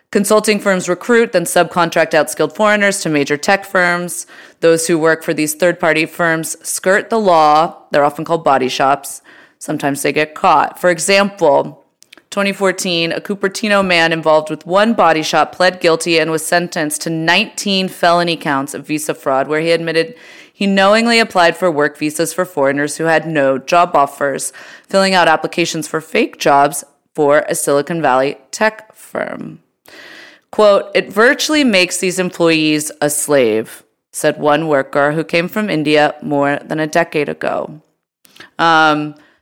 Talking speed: 155 wpm